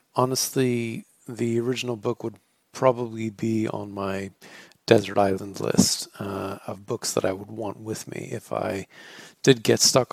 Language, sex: English, male